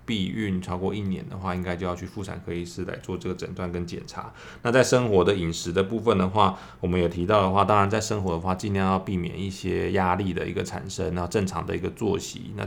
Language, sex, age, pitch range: Chinese, male, 20-39, 90-100 Hz